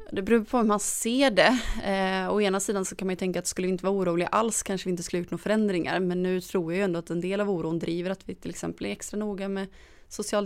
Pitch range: 170-190 Hz